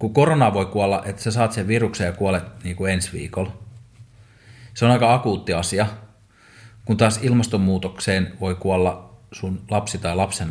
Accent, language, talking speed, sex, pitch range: native, Finnish, 160 wpm, male, 95-120 Hz